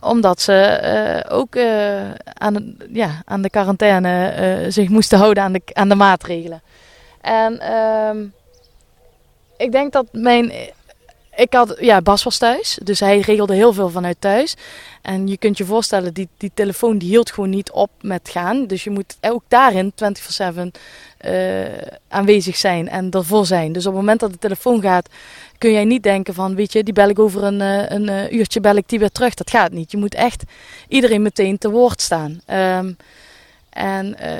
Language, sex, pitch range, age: Dutch, female, 195-225 Hz, 20-39